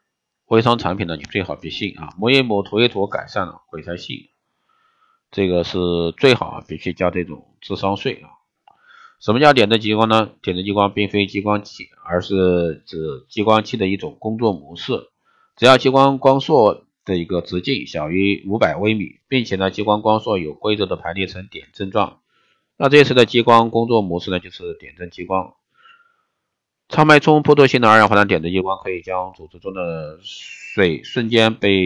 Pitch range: 90-115 Hz